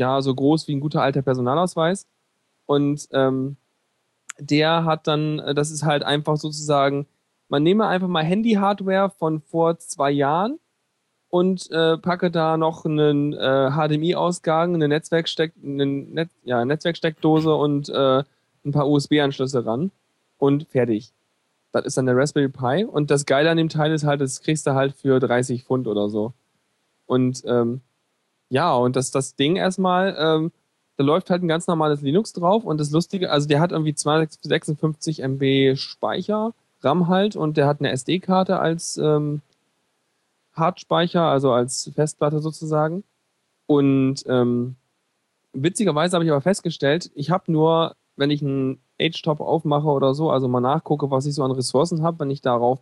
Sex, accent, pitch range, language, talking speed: male, German, 135-165 Hz, German, 160 wpm